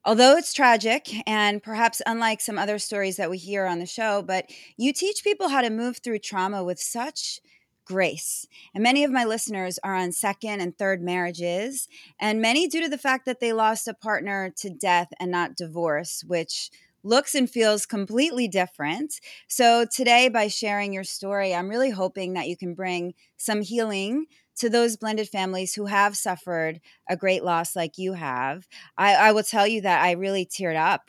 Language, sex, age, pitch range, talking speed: English, female, 30-49, 180-230 Hz, 190 wpm